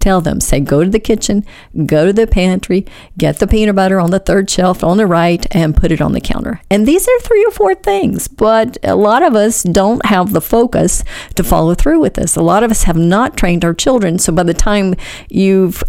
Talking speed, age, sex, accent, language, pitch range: 235 wpm, 50-69, female, American, English, 160-220 Hz